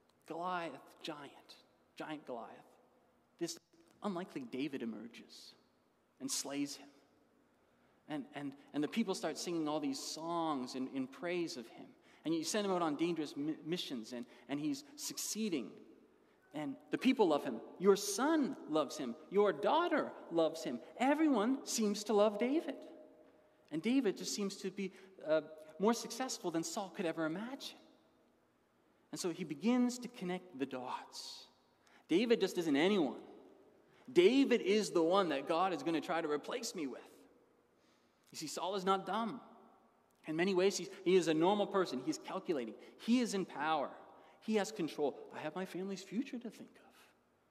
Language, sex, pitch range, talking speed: English, male, 160-245 Hz, 160 wpm